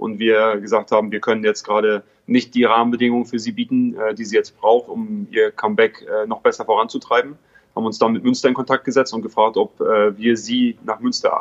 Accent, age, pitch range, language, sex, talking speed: German, 30-49, 115-150 Hz, German, male, 205 wpm